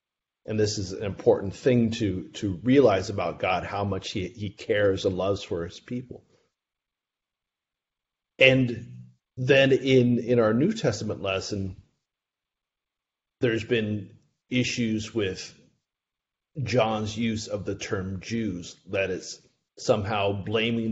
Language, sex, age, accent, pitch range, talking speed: English, male, 30-49, American, 105-125 Hz, 125 wpm